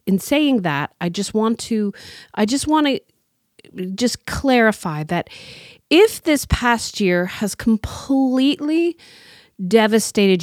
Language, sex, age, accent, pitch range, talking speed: English, female, 30-49, American, 165-215 Hz, 120 wpm